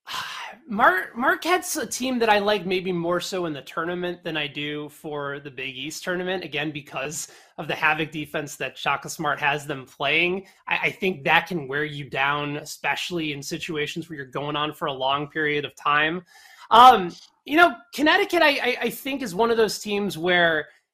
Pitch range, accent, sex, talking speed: 155-215 Hz, American, male, 195 wpm